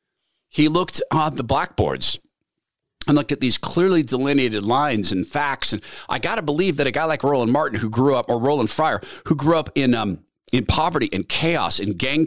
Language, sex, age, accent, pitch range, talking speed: English, male, 40-59, American, 115-165 Hz, 205 wpm